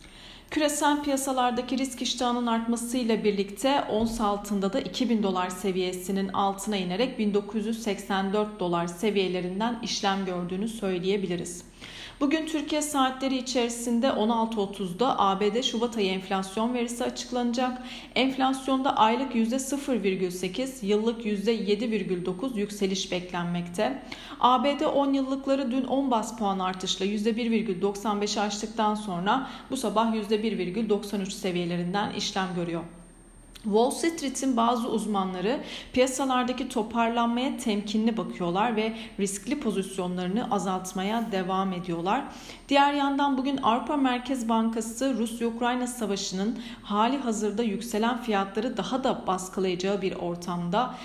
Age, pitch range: 40-59, 195-245 Hz